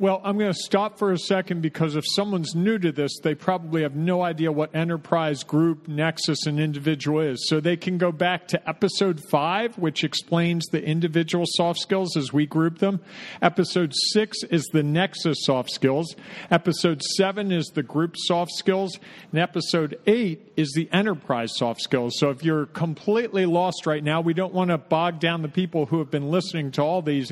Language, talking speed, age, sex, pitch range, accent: English, 195 wpm, 50-69, male, 155-185 Hz, American